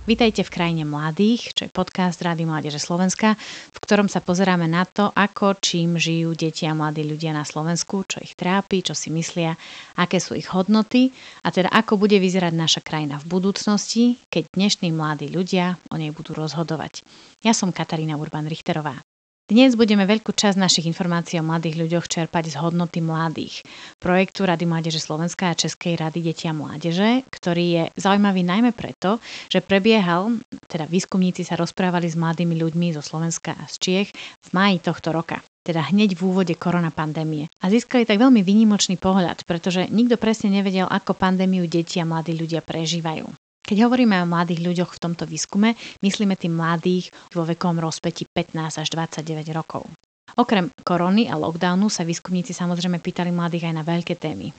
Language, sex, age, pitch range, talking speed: Slovak, female, 30-49, 165-195 Hz, 170 wpm